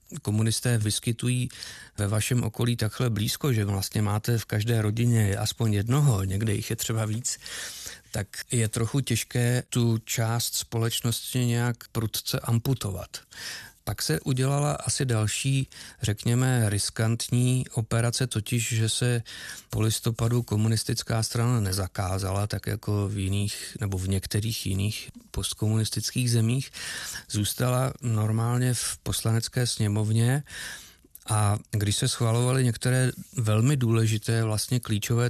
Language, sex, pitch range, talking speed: Czech, male, 105-120 Hz, 120 wpm